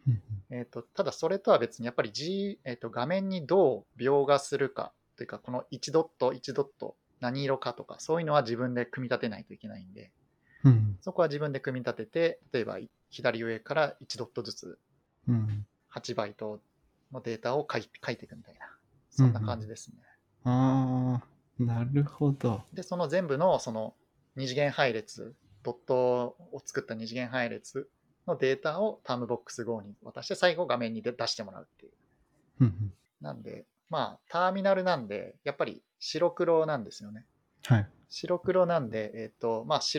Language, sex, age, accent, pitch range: Japanese, male, 30-49, native, 120-155 Hz